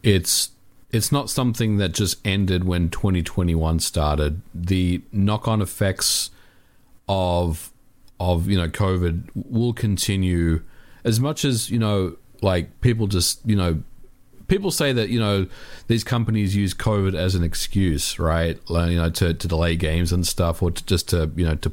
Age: 40-59